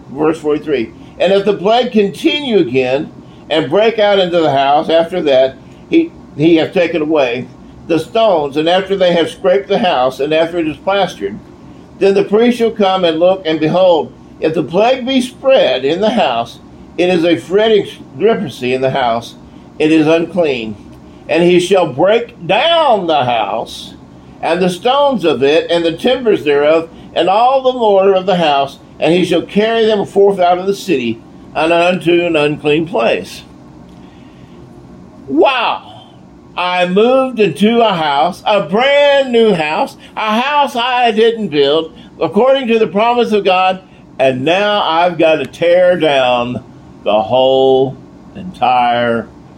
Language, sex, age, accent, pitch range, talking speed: English, male, 50-69, American, 135-210 Hz, 160 wpm